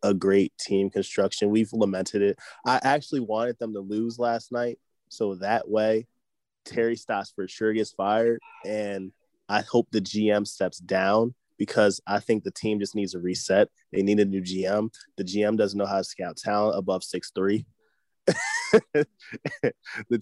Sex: male